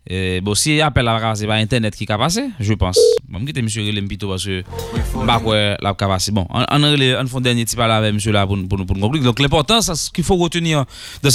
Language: English